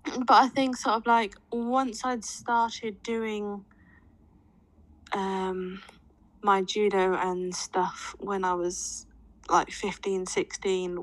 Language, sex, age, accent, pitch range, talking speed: English, female, 10-29, British, 180-205 Hz, 115 wpm